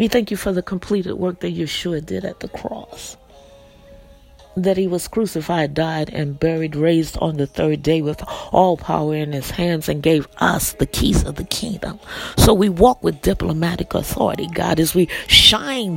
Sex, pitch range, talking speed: female, 155-210 Hz, 185 wpm